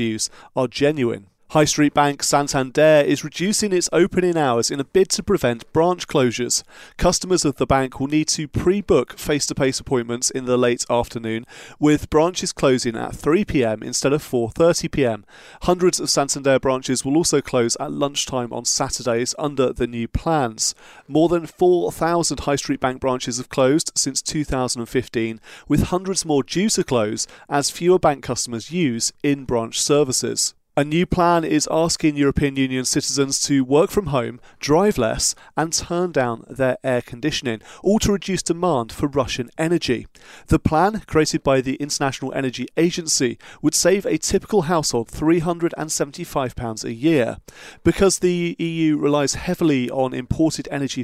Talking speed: 155 wpm